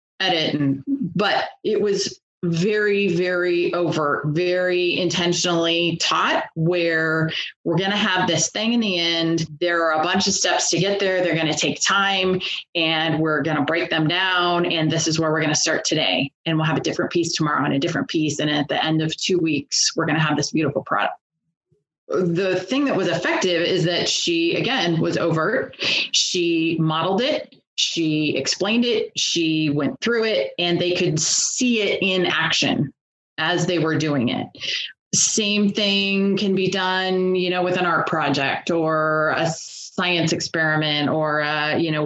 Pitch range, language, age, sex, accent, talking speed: 155-185 Hz, English, 30-49, female, American, 180 wpm